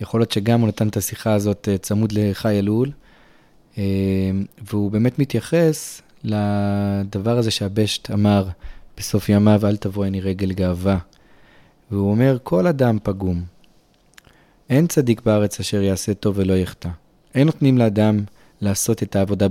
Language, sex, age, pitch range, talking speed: Hebrew, male, 30-49, 100-130 Hz, 135 wpm